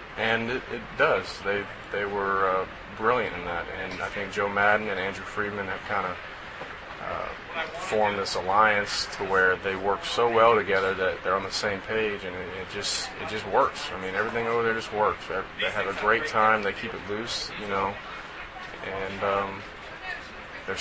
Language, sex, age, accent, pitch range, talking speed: English, male, 20-39, American, 100-115 Hz, 190 wpm